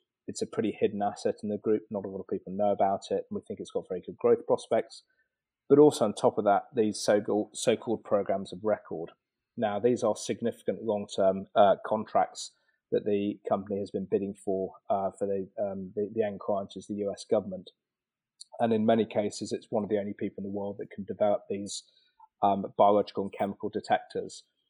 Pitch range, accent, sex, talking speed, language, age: 100-130 Hz, British, male, 205 wpm, English, 30-49